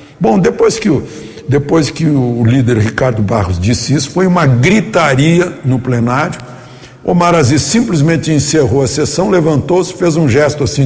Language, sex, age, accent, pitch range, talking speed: Portuguese, male, 60-79, Brazilian, 125-160 Hz, 145 wpm